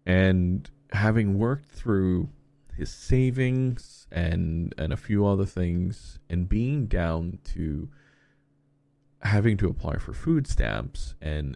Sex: male